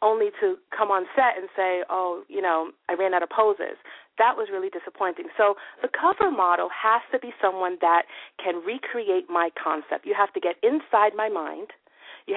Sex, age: female, 40-59